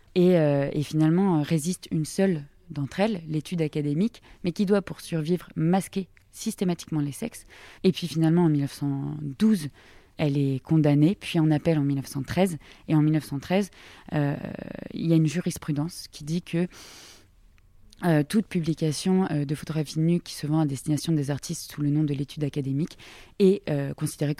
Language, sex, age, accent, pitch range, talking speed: French, female, 20-39, French, 145-165 Hz, 165 wpm